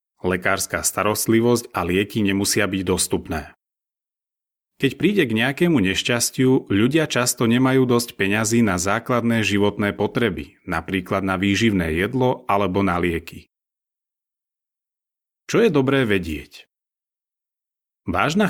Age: 30-49